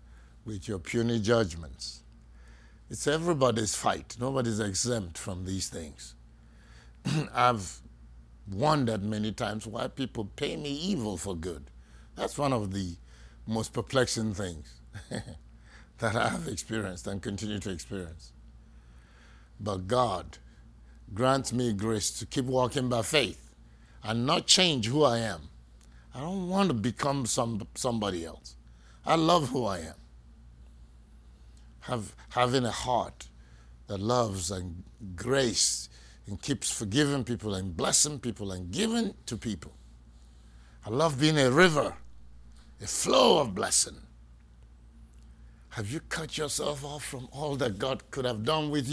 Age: 60-79